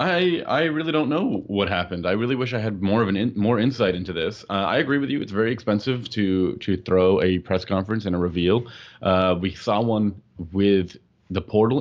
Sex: male